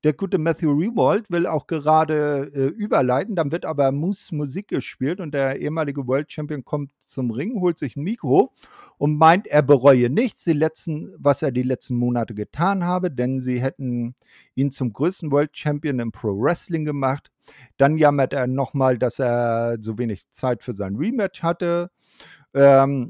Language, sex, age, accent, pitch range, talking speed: German, male, 50-69, German, 120-160 Hz, 170 wpm